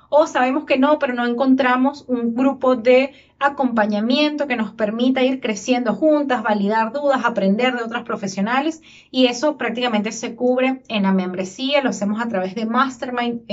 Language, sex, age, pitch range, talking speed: Spanish, female, 20-39, 210-270 Hz, 165 wpm